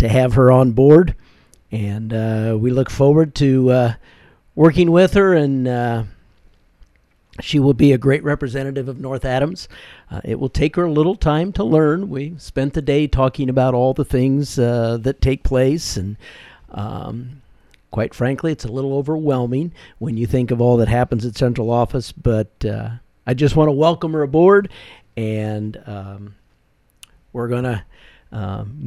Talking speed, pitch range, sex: 170 wpm, 115-150 Hz, male